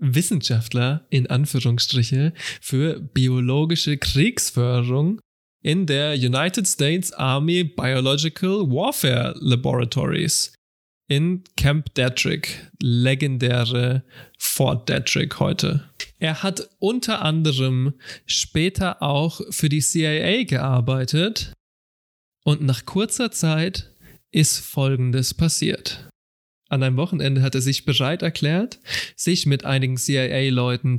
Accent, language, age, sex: German, German, 20-39, male